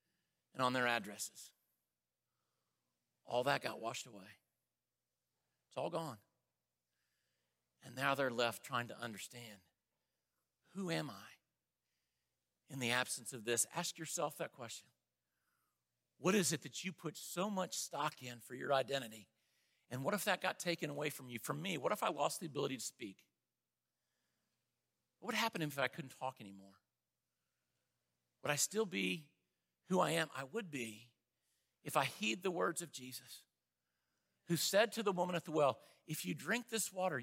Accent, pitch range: American, 120-195 Hz